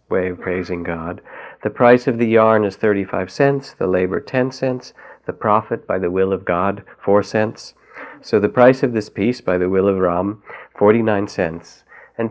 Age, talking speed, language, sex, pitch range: 50-69, 190 wpm, English, male, 90-115 Hz